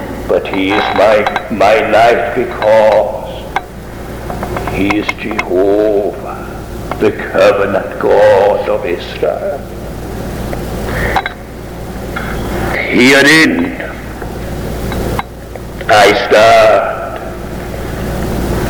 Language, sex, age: English, male, 60-79